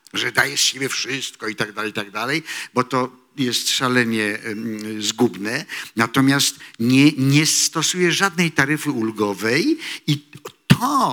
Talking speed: 135 wpm